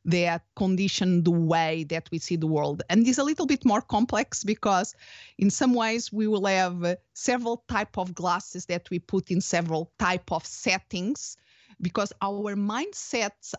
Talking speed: 170 wpm